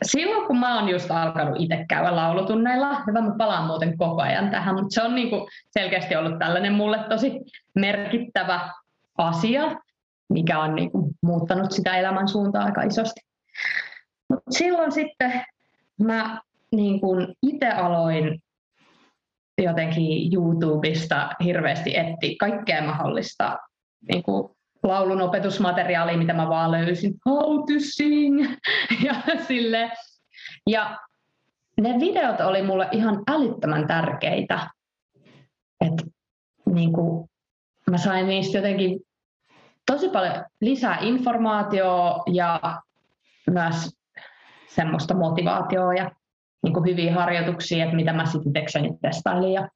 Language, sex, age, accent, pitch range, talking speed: Finnish, female, 20-39, native, 170-230 Hz, 110 wpm